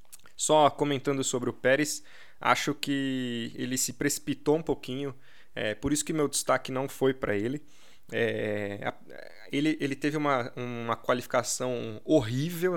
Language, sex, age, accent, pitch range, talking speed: Portuguese, male, 20-39, Brazilian, 115-140 Hz, 140 wpm